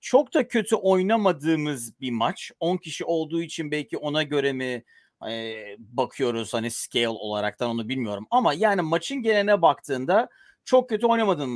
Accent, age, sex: native, 40-59, male